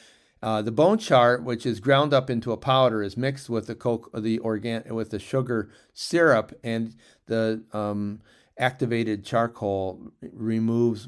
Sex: male